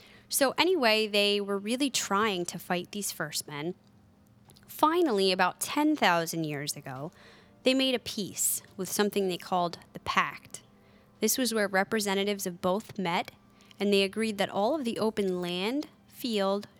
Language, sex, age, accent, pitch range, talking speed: English, female, 20-39, American, 175-220 Hz, 155 wpm